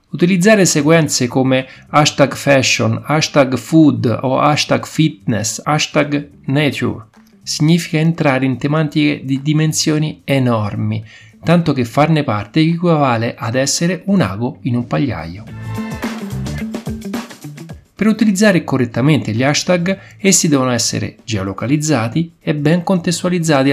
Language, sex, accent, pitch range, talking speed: Italian, male, native, 115-165 Hz, 110 wpm